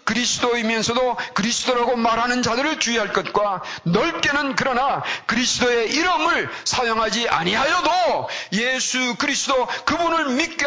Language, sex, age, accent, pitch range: Korean, male, 40-59, native, 145-235 Hz